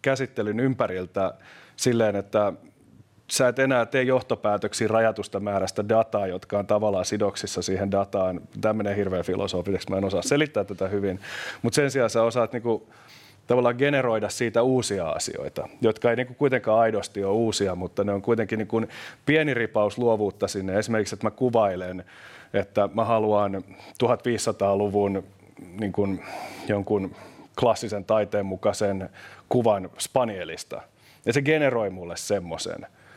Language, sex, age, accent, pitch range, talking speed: Finnish, male, 30-49, native, 100-115 Hz, 135 wpm